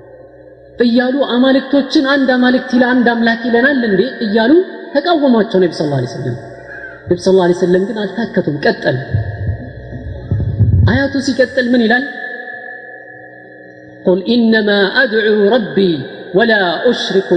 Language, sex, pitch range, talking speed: Amharic, female, 155-245 Hz, 60 wpm